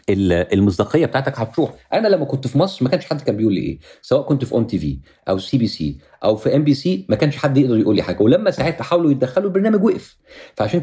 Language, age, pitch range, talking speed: Arabic, 50-69, 100-150 Hz, 245 wpm